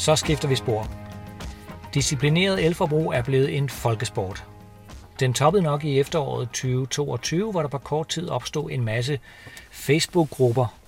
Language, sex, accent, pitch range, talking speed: Danish, male, native, 120-150 Hz, 140 wpm